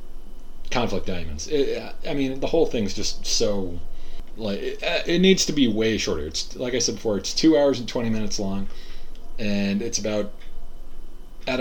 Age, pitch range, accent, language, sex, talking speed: 30-49, 95-135 Hz, American, English, male, 175 wpm